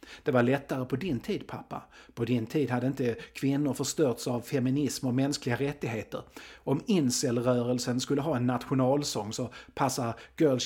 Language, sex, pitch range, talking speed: Swedish, male, 120-140 Hz, 160 wpm